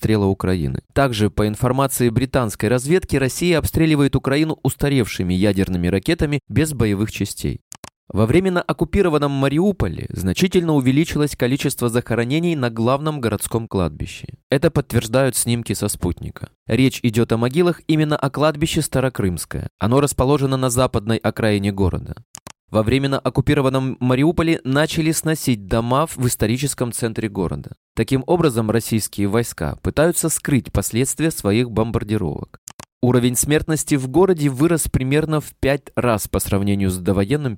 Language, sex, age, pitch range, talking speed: Russian, male, 20-39, 105-145 Hz, 125 wpm